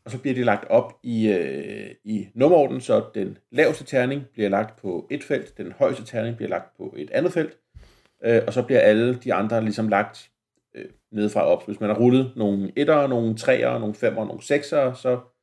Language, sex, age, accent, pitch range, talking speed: Danish, male, 40-59, native, 105-125 Hz, 215 wpm